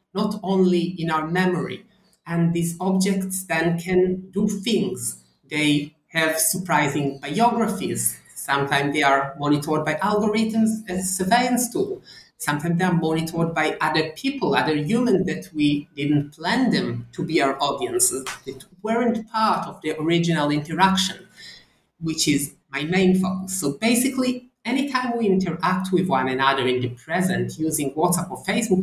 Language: English